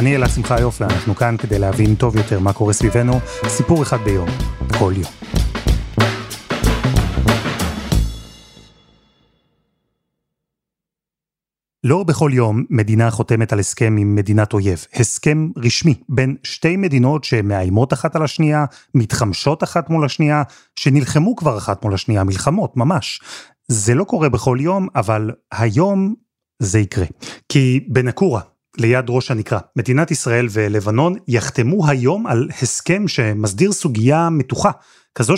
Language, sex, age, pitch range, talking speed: Hebrew, male, 30-49, 110-150 Hz, 125 wpm